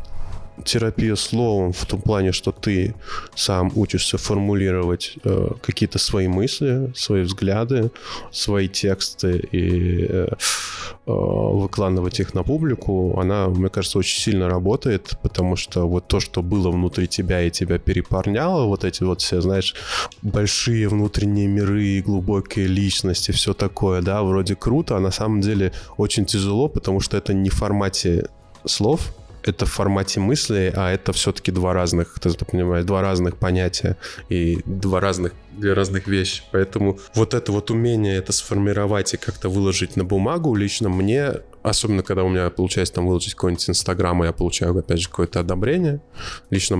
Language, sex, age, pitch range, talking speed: Russian, male, 20-39, 90-105 Hz, 155 wpm